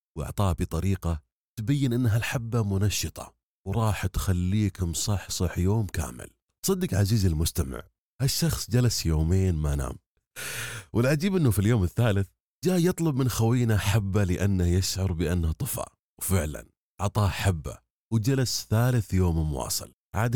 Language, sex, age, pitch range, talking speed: Arabic, male, 30-49, 85-115 Hz, 120 wpm